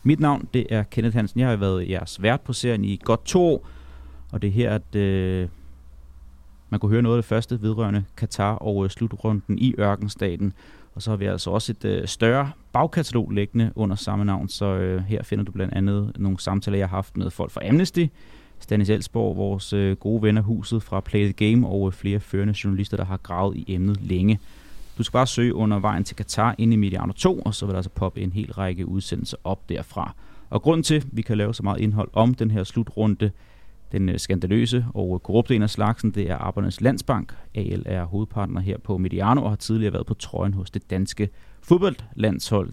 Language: Danish